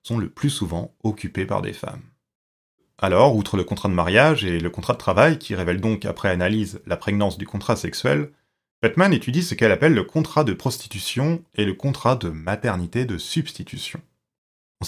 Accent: French